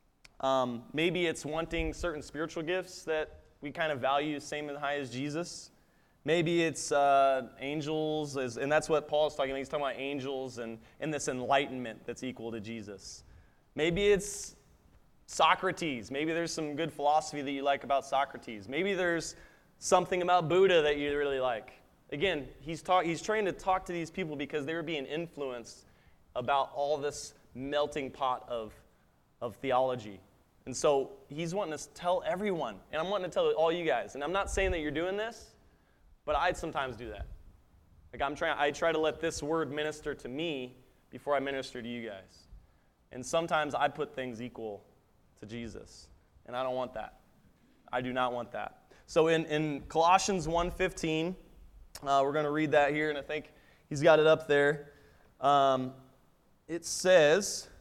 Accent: American